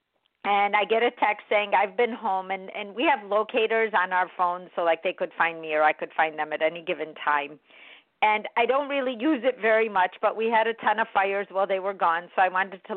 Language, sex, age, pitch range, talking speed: English, female, 50-69, 180-225 Hz, 255 wpm